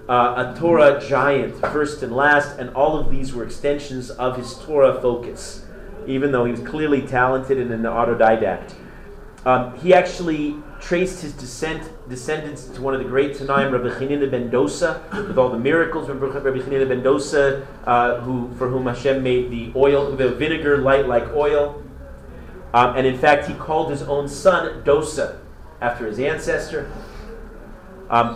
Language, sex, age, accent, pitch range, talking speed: English, male, 30-49, American, 125-150 Hz, 165 wpm